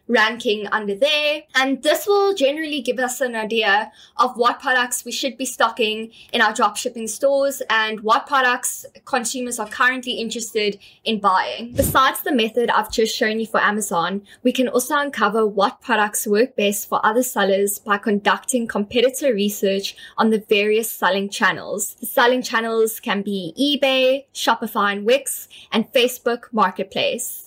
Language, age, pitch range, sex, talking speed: English, 10-29, 215-260 Hz, female, 155 wpm